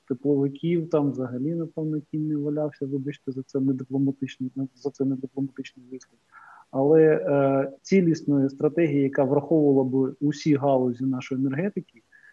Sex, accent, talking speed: male, native, 120 wpm